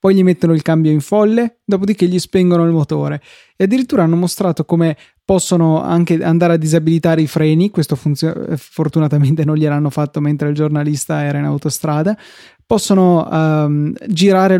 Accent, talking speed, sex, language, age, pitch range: native, 150 wpm, male, Italian, 20-39, 155-180 Hz